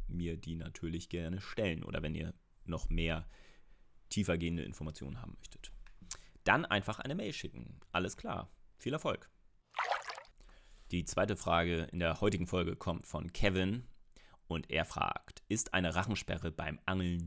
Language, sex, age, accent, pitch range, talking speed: German, male, 30-49, German, 85-100 Hz, 140 wpm